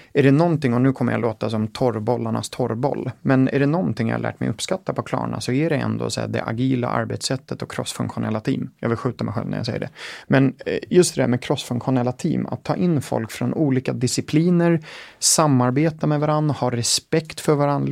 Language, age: English, 30-49